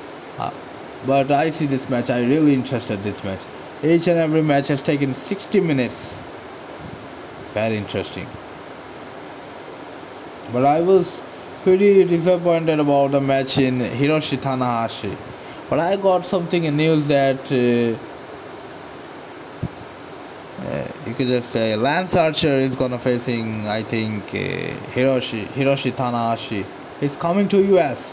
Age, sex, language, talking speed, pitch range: 20-39, male, English, 130 wpm, 120-145 Hz